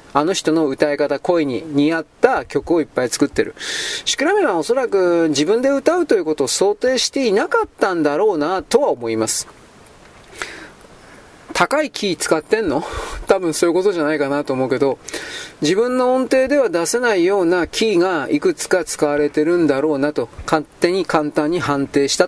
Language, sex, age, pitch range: Japanese, male, 30-49, 175-275 Hz